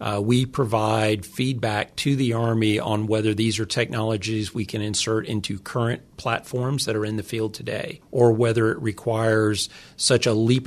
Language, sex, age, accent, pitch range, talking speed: English, male, 40-59, American, 105-120 Hz, 175 wpm